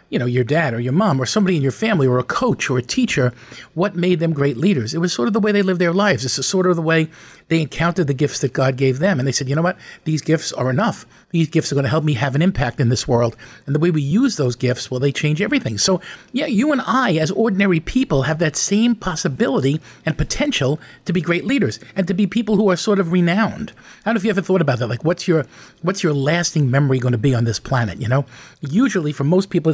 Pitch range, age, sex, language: 140-185 Hz, 50-69, male, English